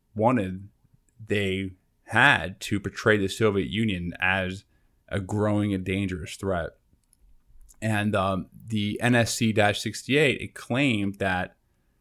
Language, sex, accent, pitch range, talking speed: English, male, American, 90-110 Hz, 105 wpm